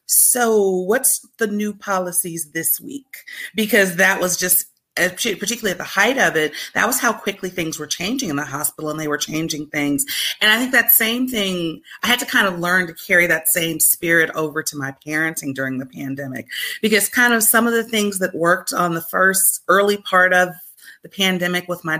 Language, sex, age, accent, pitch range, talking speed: English, female, 30-49, American, 165-205 Hz, 205 wpm